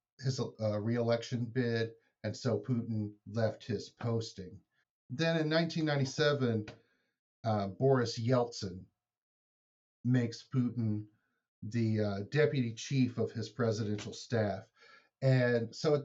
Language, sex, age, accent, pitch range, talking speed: English, male, 40-59, American, 110-135 Hz, 110 wpm